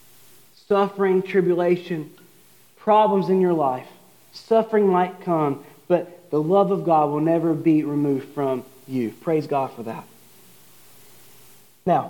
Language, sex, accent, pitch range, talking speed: English, male, American, 165-235 Hz, 125 wpm